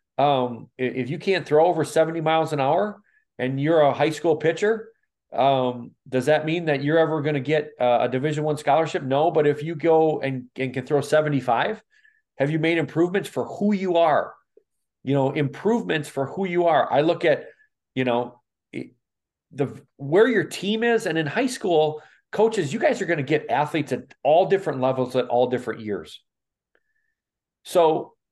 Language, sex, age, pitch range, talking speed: English, male, 40-59, 135-170 Hz, 185 wpm